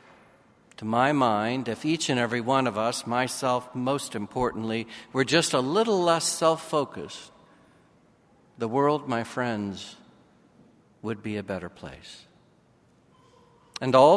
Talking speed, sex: 125 wpm, male